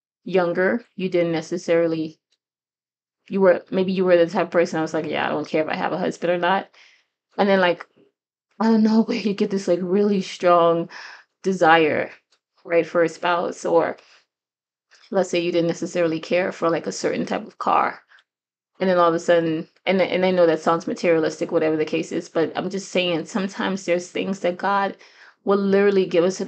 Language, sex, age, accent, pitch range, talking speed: English, female, 20-39, American, 170-195 Hz, 205 wpm